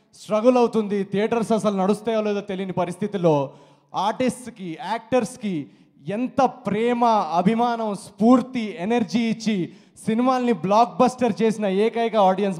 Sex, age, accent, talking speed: male, 20-39, native, 105 wpm